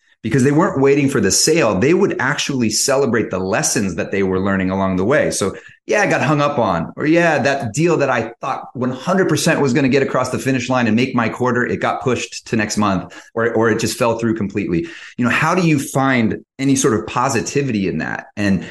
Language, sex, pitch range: English, male, 105-135 Hz